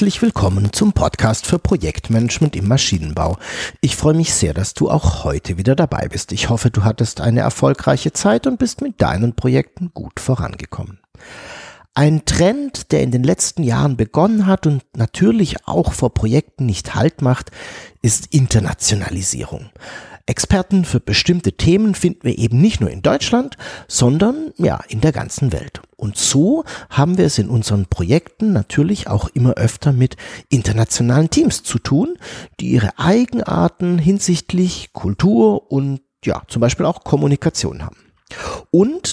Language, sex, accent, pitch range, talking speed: German, male, German, 105-175 Hz, 150 wpm